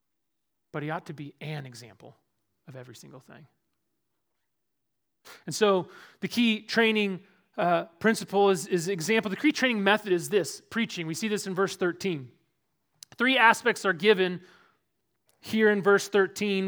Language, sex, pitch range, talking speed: English, male, 185-230 Hz, 150 wpm